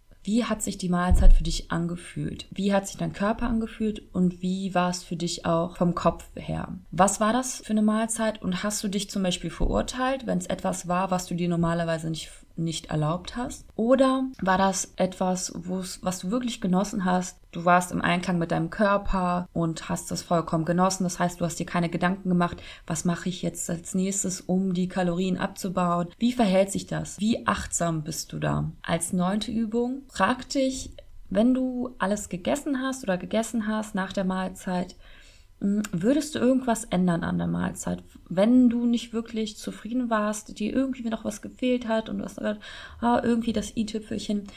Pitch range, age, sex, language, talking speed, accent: 180-225 Hz, 20-39, female, German, 185 wpm, German